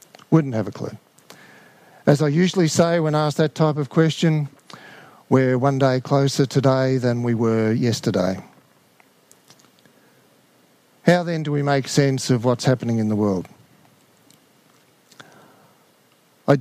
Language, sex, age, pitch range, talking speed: English, male, 50-69, 120-150 Hz, 130 wpm